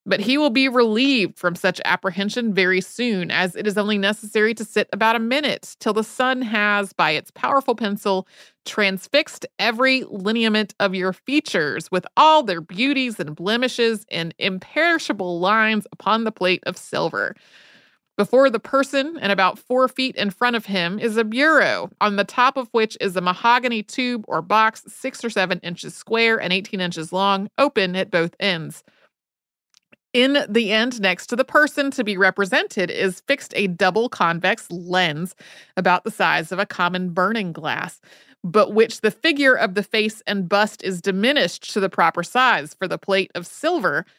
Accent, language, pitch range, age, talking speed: American, English, 185-245 Hz, 30-49, 175 wpm